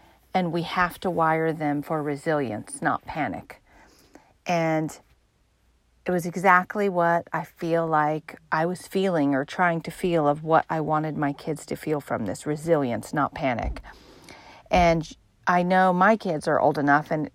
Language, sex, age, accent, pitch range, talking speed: English, female, 40-59, American, 150-175 Hz, 165 wpm